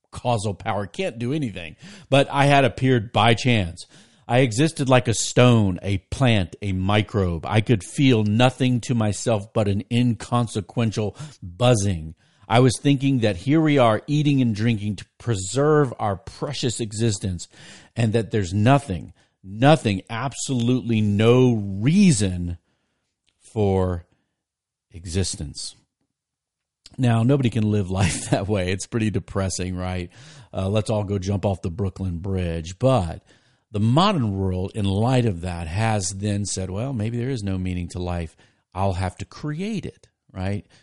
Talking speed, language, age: 145 wpm, English, 50-69